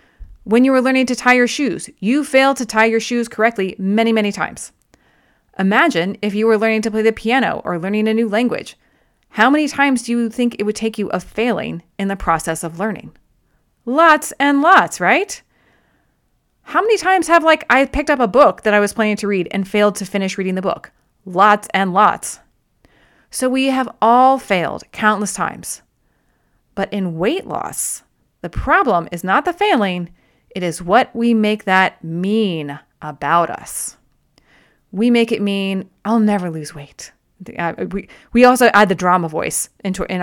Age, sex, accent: 30-49, female, American